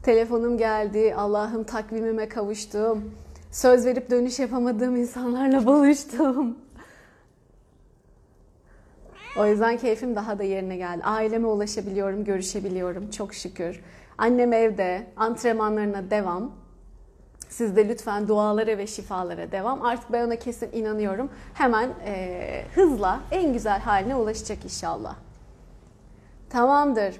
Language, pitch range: Turkish, 215-295 Hz